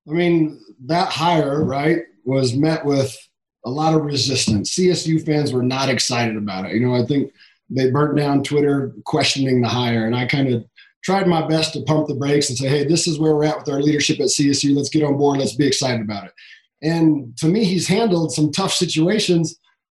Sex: male